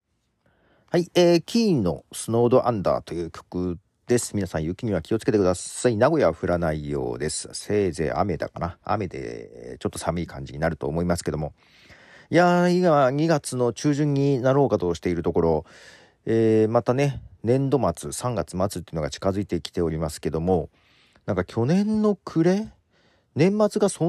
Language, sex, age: Japanese, male, 40-59